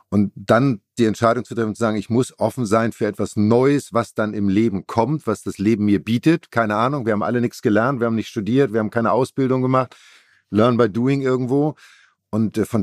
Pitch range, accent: 95-115 Hz, German